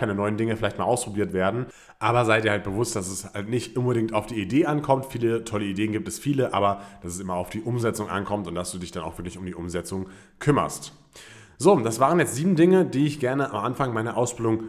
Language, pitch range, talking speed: German, 100-125 Hz, 240 wpm